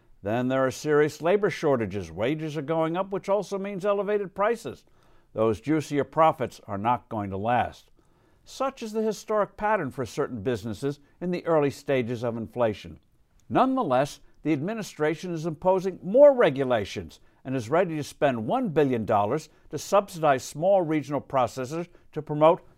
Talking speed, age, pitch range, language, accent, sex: 155 wpm, 60-79, 125-170 Hz, English, American, male